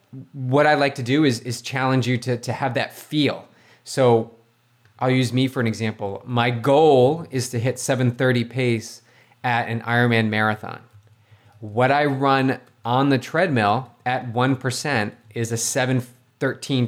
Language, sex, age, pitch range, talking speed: English, male, 20-39, 115-135 Hz, 155 wpm